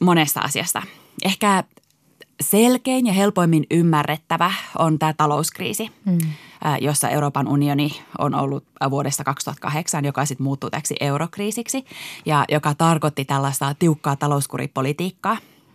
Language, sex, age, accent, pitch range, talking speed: Finnish, female, 20-39, native, 140-165 Hz, 100 wpm